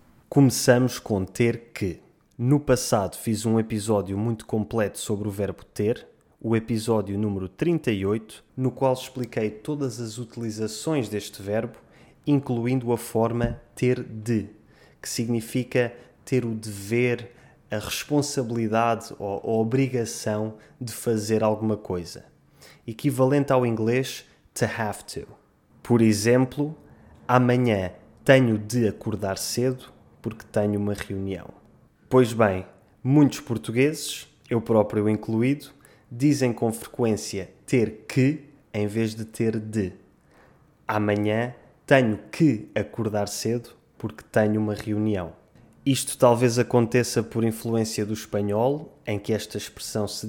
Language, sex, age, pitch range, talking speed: Portuguese, male, 20-39, 105-125 Hz, 120 wpm